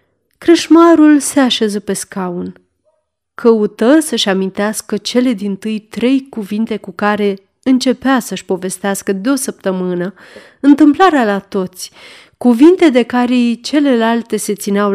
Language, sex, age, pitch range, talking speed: Romanian, female, 30-49, 195-265 Hz, 120 wpm